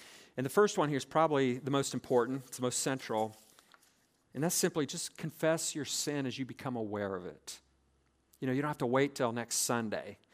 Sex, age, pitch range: male, 40-59, 120-145 Hz